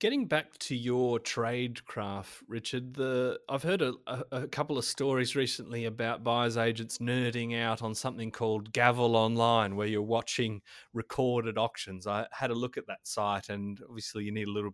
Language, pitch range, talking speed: English, 110-125 Hz, 180 wpm